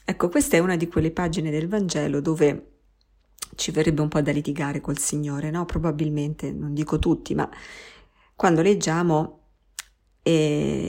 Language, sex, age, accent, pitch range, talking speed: Italian, female, 50-69, native, 150-165 Hz, 150 wpm